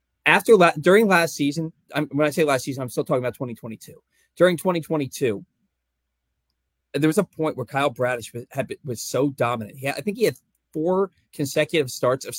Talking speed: 200 wpm